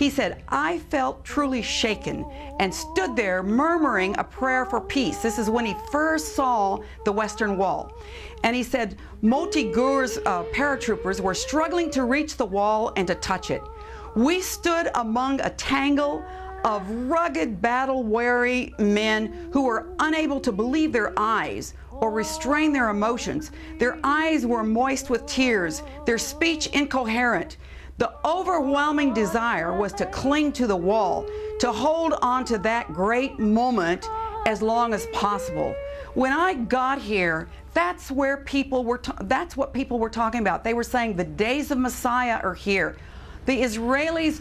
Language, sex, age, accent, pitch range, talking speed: English, female, 50-69, American, 220-290 Hz, 155 wpm